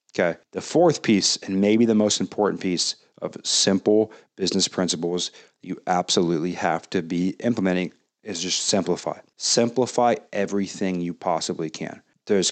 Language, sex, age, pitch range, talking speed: English, male, 30-49, 90-110 Hz, 140 wpm